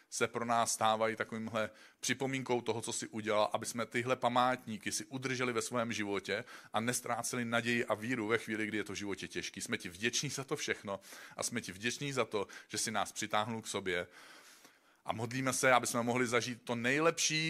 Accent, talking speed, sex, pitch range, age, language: native, 200 wpm, male, 105-125 Hz, 40-59, Czech